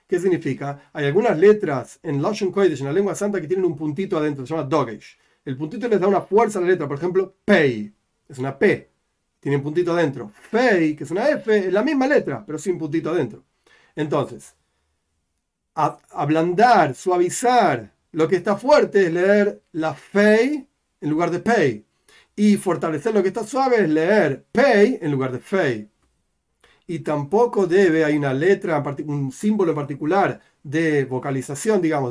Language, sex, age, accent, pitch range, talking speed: Spanish, male, 40-59, Argentinian, 145-200 Hz, 170 wpm